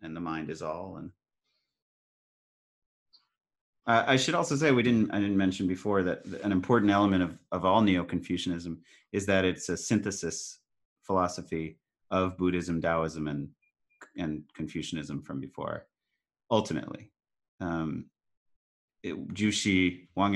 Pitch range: 80-100 Hz